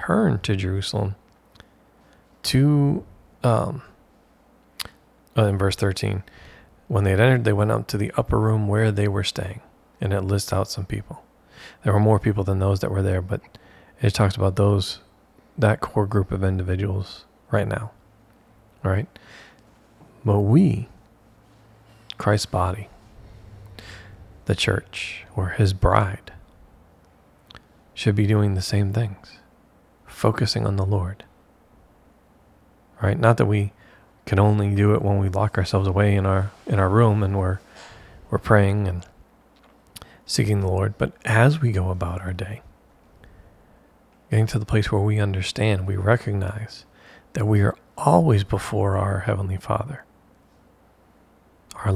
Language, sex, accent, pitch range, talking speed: English, male, American, 95-110 Hz, 140 wpm